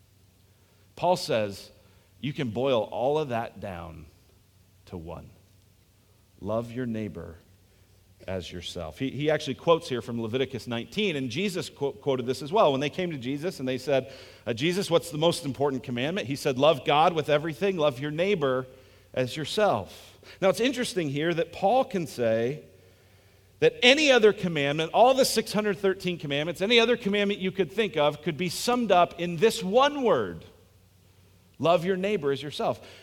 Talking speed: 165 wpm